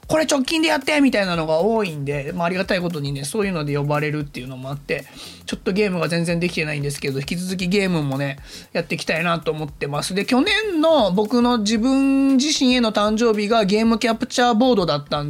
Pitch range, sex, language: 160-235 Hz, male, Japanese